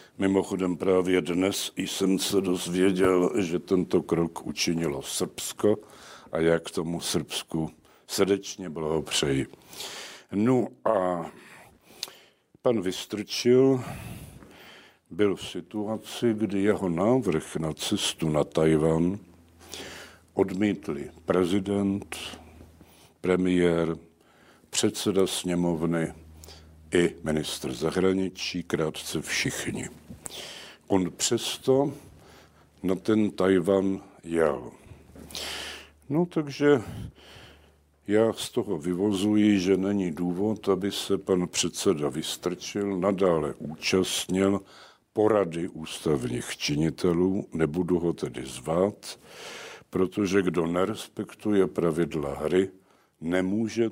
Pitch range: 85-100 Hz